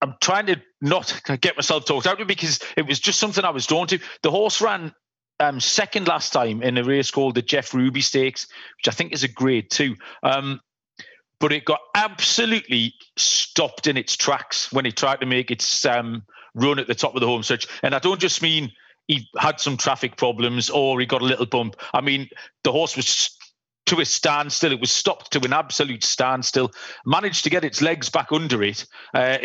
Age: 40-59